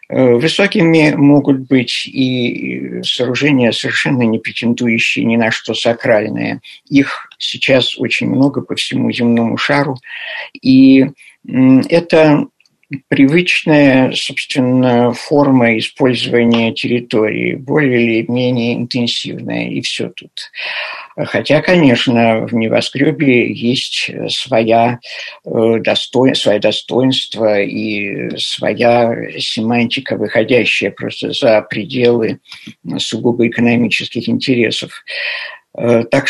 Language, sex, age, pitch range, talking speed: Russian, male, 50-69, 115-140 Hz, 85 wpm